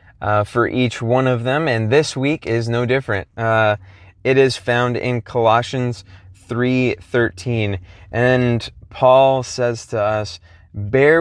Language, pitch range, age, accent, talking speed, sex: English, 100-120 Hz, 20-39, American, 135 wpm, male